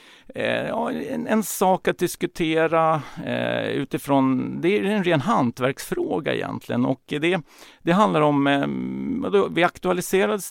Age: 50-69